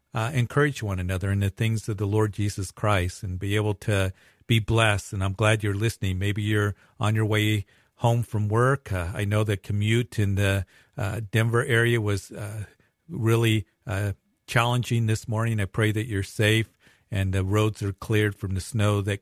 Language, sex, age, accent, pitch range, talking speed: English, male, 50-69, American, 100-110 Hz, 195 wpm